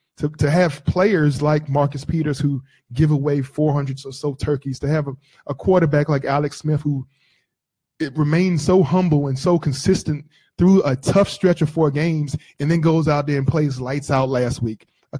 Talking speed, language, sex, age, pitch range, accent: 195 wpm, English, male, 20-39, 135-160 Hz, American